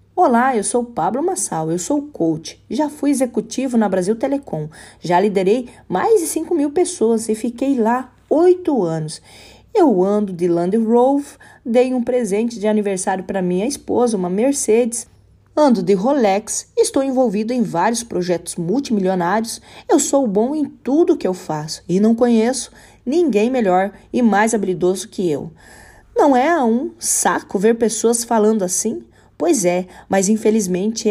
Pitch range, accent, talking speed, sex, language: 200-260 Hz, Brazilian, 155 wpm, female, Portuguese